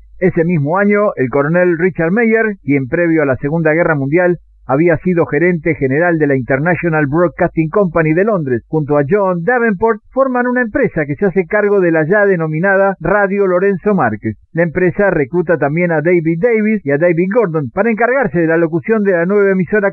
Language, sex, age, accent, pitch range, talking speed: Spanish, male, 50-69, Argentinian, 155-205 Hz, 190 wpm